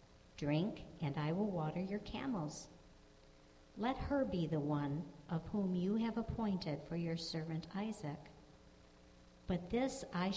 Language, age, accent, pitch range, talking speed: English, 60-79, American, 145-190 Hz, 140 wpm